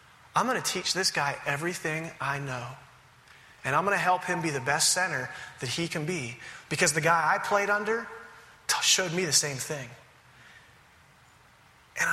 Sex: male